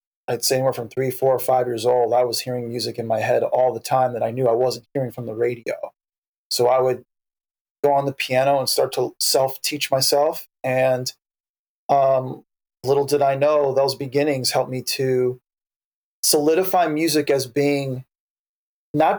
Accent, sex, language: American, male, English